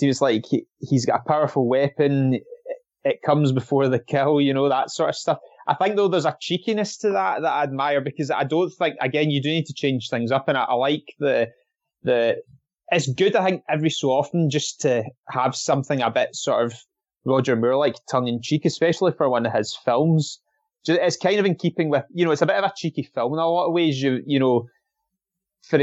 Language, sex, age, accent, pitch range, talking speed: English, male, 20-39, British, 130-165 Hz, 225 wpm